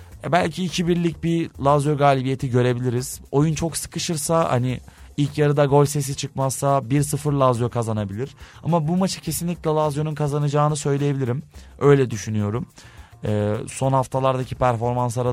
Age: 30-49